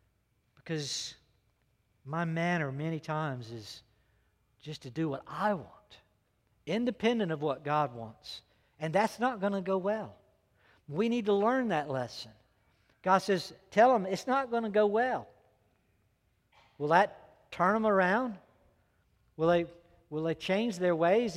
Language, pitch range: English, 120-170 Hz